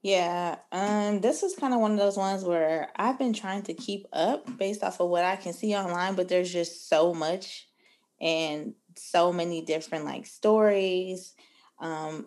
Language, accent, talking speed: English, American, 180 wpm